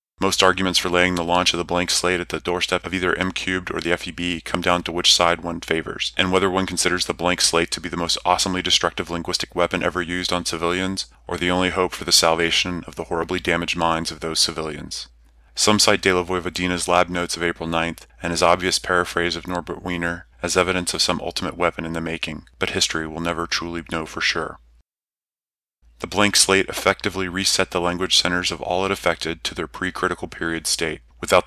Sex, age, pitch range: male, 30-49, 85-90 Hz